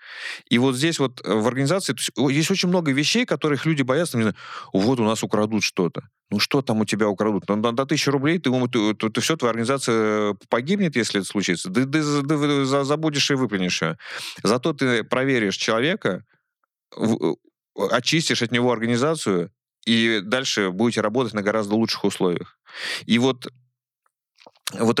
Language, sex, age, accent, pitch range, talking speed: Russian, male, 30-49, native, 100-125 Hz, 165 wpm